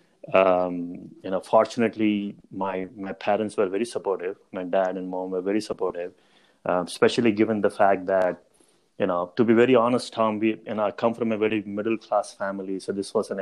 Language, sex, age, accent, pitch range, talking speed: English, male, 30-49, Indian, 95-120 Hz, 200 wpm